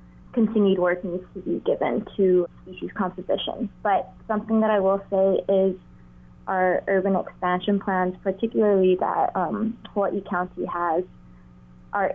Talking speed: 135 wpm